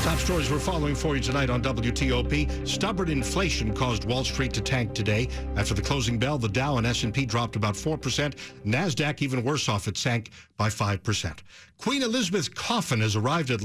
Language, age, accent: English, 60-79, American